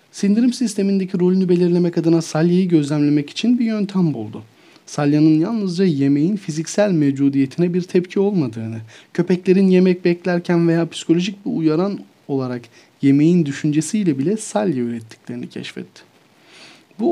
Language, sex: Turkish, male